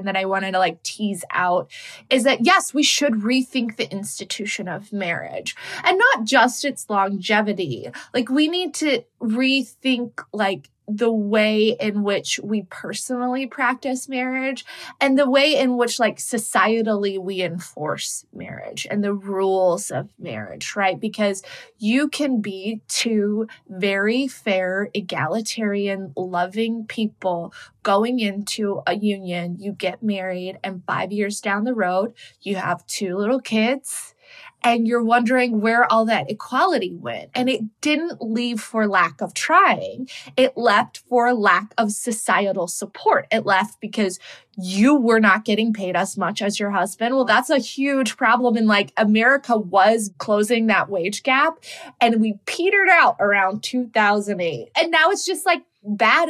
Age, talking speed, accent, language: 20-39, 150 wpm, American, English